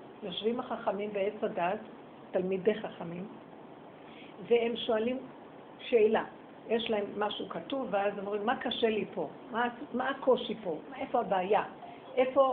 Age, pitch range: 50-69, 210-255 Hz